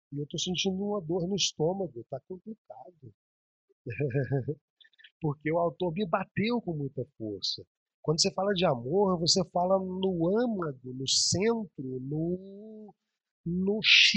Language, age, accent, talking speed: Portuguese, 40-59, Brazilian, 130 wpm